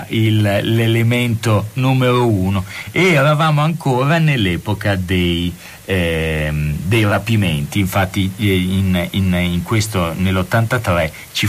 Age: 40-59